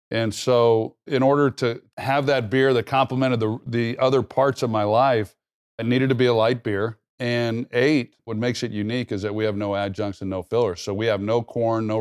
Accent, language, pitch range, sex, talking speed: American, English, 100-125 Hz, male, 225 wpm